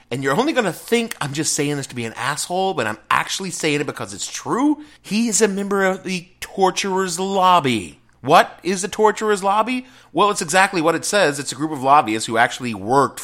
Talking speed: 220 wpm